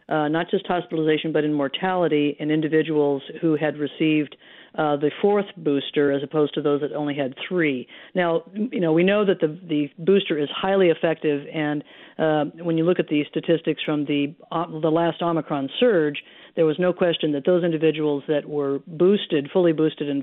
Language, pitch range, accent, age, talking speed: English, 150-175 Hz, American, 50-69, 190 wpm